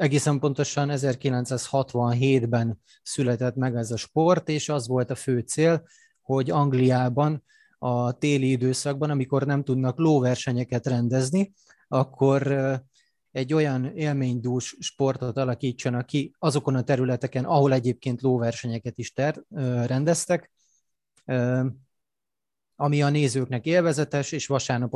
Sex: male